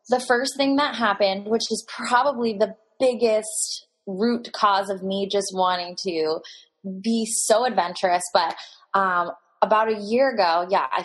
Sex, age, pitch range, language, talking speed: female, 20-39, 190-255 Hz, English, 150 wpm